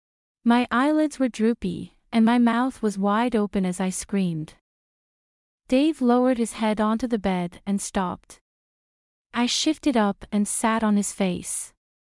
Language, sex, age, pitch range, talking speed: English, female, 30-49, 195-245 Hz, 150 wpm